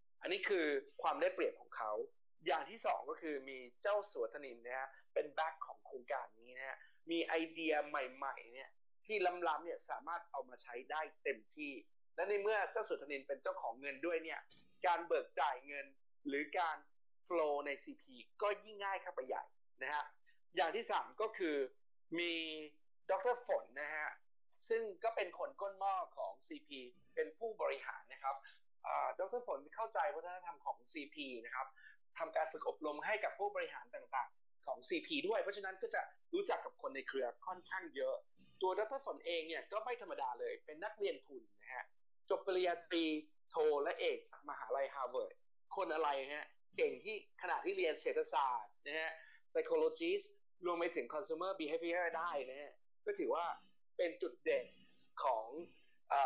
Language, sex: Thai, male